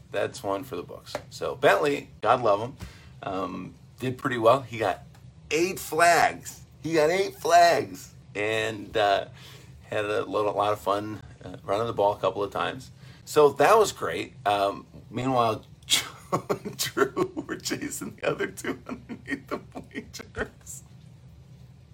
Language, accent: English, American